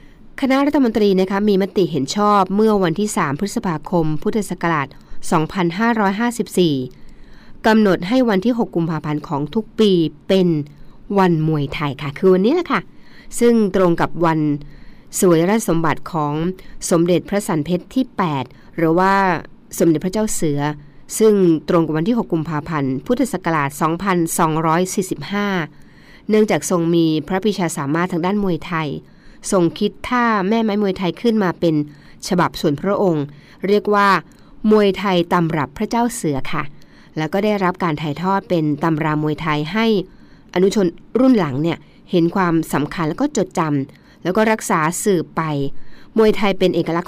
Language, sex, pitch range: Thai, female, 155-200 Hz